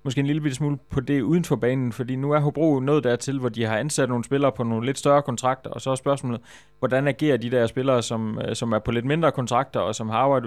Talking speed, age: 265 wpm, 20-39